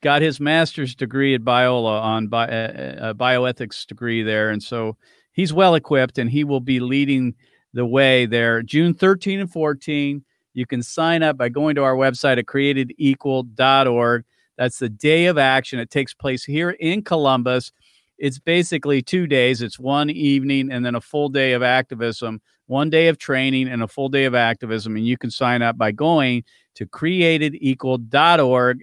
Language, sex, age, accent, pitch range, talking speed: English, male, 40-59, American, 125-155 Hz, 175 wpm